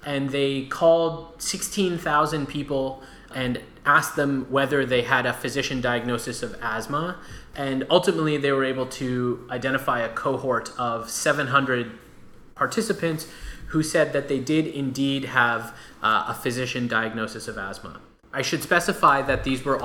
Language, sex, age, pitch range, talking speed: English, male, 20-39, 125-155 Hz, 140 wpm